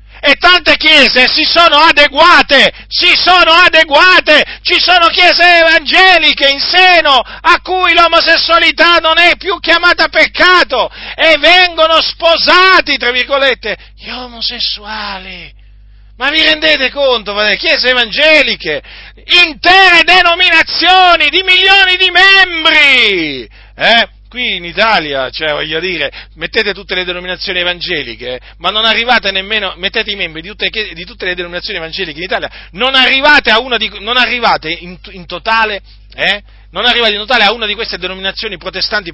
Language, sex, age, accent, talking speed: Italian, male, 40-59, native, 125 wpm